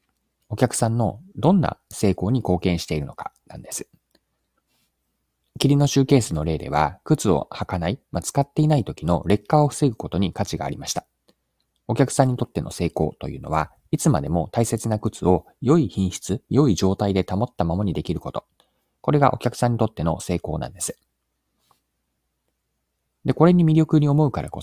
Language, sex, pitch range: Japanese, male, 85-130 Hz